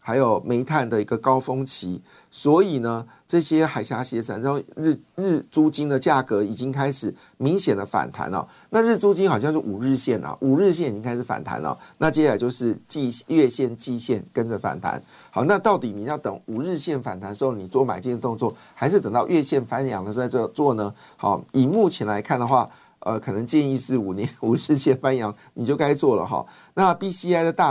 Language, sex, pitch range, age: Chinese, male, 110-150 Hz, 50-69